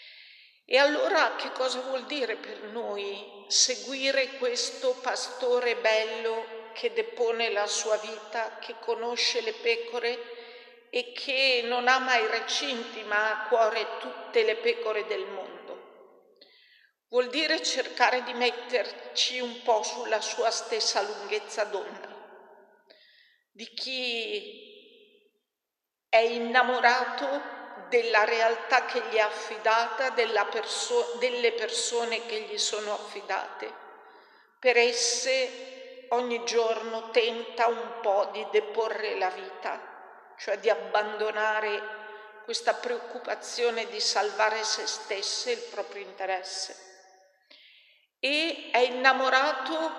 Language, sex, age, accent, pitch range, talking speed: Italian, female, 50-69, native, 215-315 Hz, 110 wpm